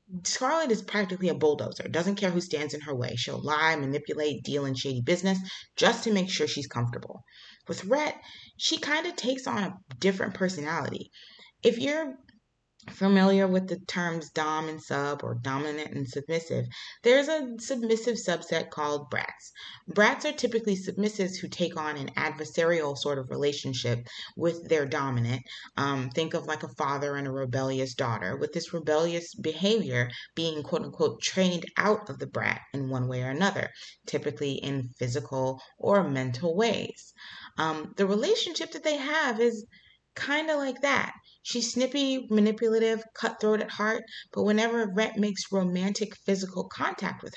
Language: English